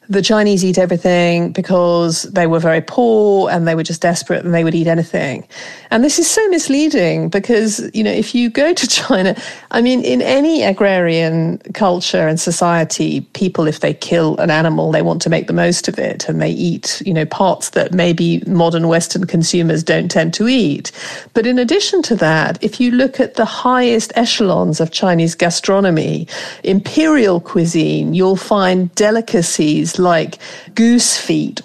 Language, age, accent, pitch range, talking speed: English, 40-59, British, 170-230 Hz, 175 wpm